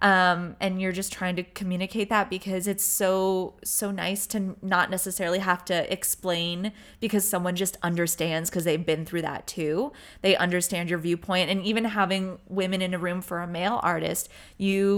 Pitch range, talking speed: 170-195 Hz, 180 wpm